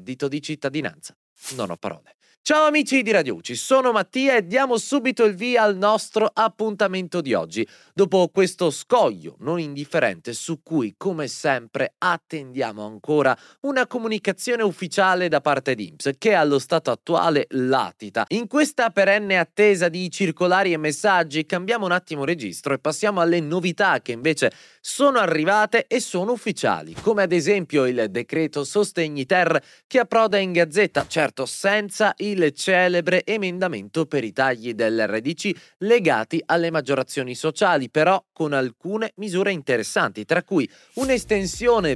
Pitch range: 140-205 Hz